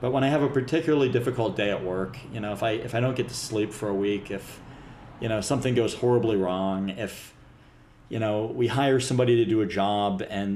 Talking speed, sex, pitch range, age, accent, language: 235 wpm, male, 100-125 Hz, 30-49, American, English